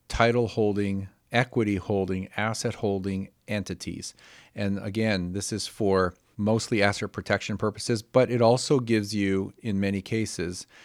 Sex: male